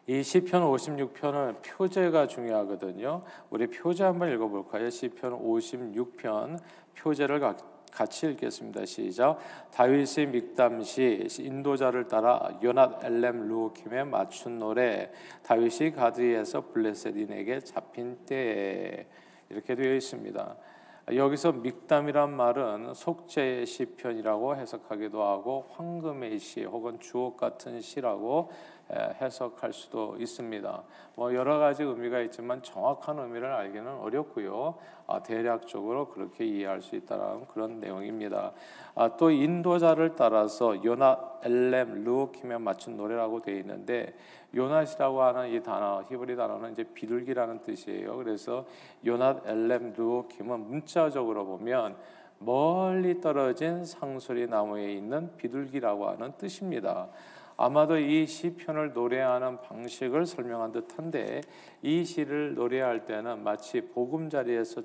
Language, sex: Korean, male